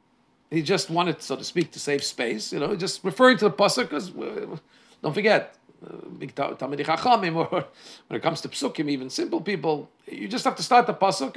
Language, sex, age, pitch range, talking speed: English, male, 50-69, 125-185 Hz, 195 wpm